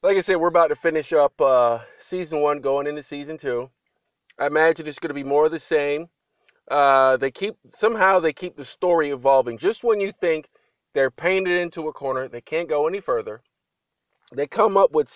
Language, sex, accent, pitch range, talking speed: English, male, American, 130-175 Hz, 205 wpm